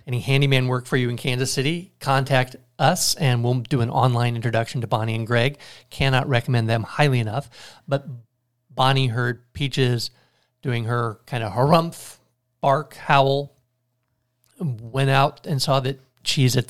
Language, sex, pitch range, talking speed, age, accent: English, male, 125-145 Hz, 155 wpm, 50-69, American